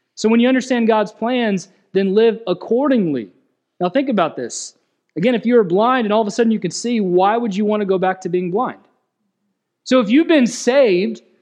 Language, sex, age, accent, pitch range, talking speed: English, male, 30-49, American, 190-240 Hz, 210 wpm